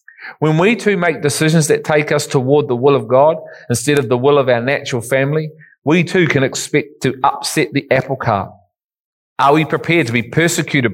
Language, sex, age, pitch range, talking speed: English, male, 40-59, 130-155 Hz, 195 wpm